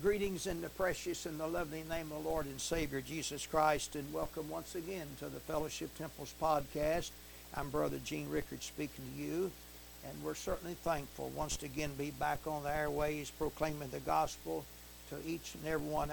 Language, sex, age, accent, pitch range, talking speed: English, male, 60-79, American, 140-165 Hz, 185 wpm